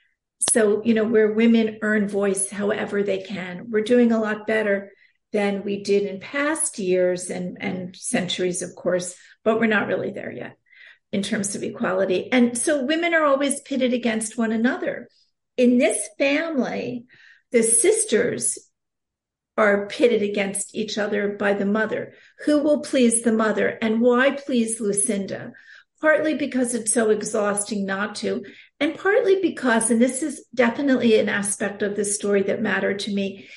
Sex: female